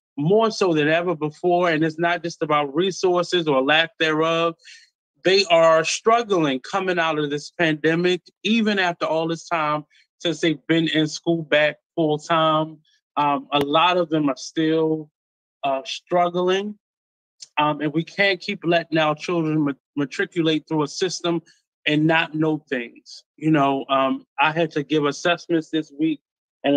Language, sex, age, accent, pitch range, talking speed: English, male, 20-39, American, 150-175 Hz, 160 wpm